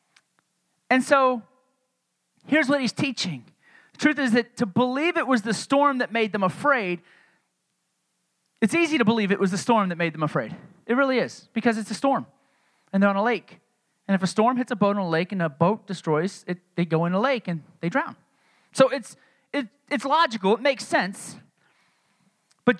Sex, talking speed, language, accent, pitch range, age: male, 200 wpm, English, American, 200-270 Hz, 30-49